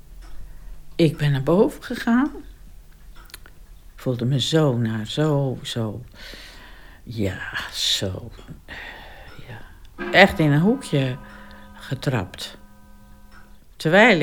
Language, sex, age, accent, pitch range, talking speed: English, female, 60-79, Dutch, 125-165 Hz, 90 wpm